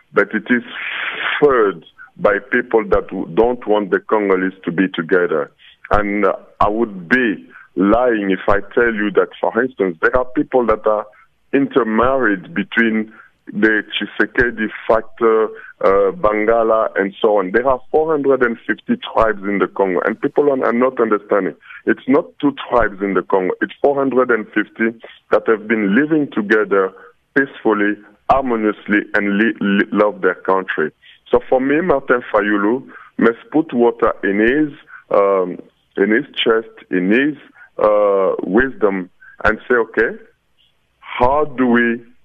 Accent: French